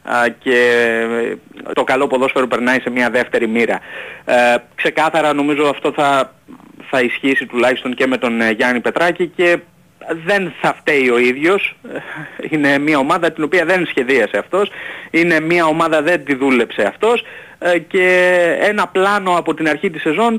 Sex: male